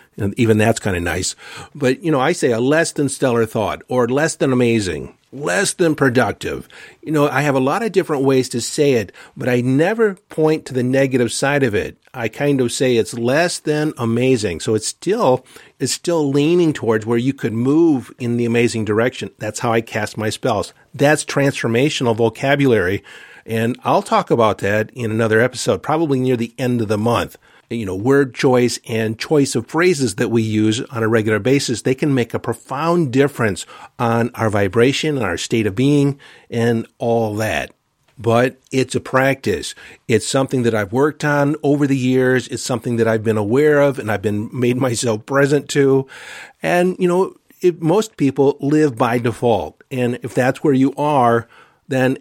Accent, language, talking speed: American, English, 190 wpm